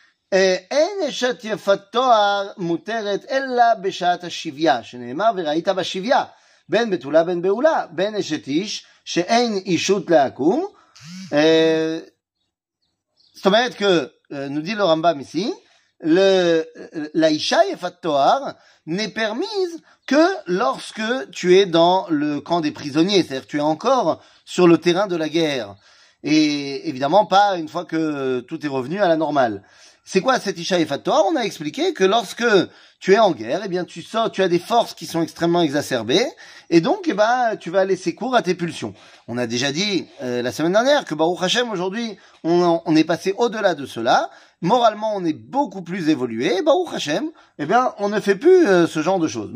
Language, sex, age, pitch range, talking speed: French, male, 30-49, 165-260 Hz, 145 wpm